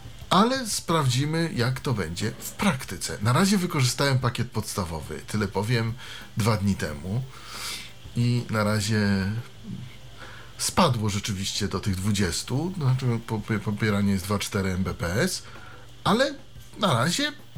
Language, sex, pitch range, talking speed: Polish, male, 105-155 Hz, 115 wpm